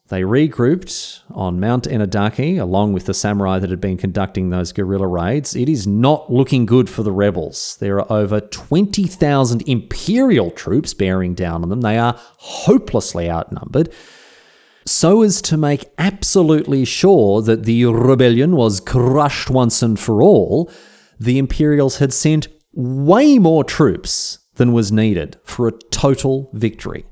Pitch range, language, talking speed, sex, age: 105-150 Hz, English, 150 wpm, male, 30-49